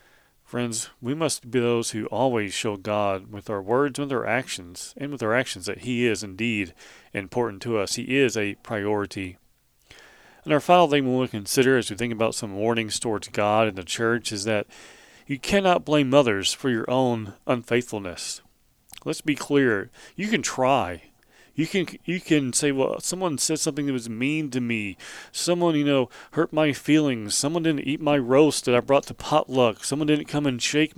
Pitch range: 110-140 Hz